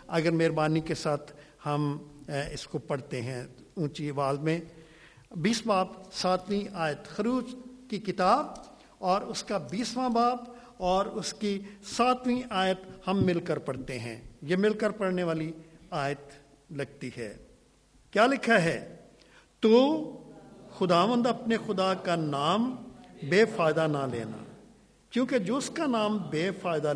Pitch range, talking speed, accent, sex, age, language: 150-210 Hz, 120 wpm, Indian, male, 50-69, English